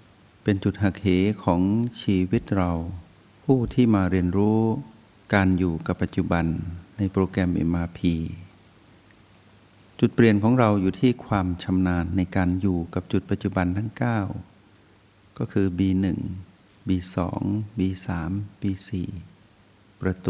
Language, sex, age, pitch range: Thai, male, 60-79, 90-105 Hz